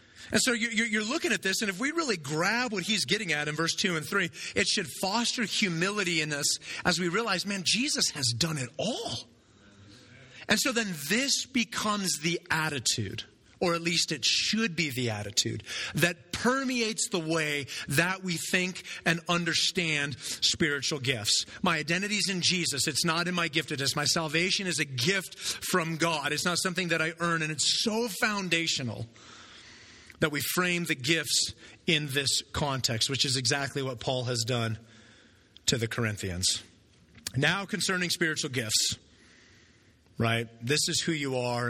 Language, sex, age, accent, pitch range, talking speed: English, male, 30-49, American, 120-185 Hz, 165 wpm